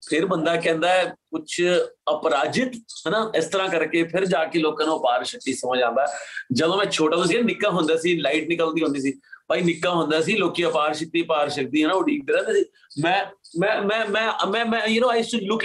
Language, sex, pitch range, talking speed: Punjabi, male, 155-215 Hz, 200 wpm